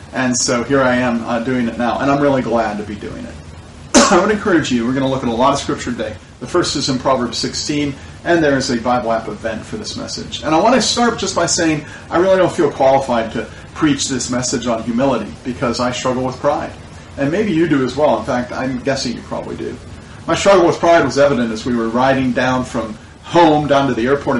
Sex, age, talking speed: male, 40-59, 250 wpm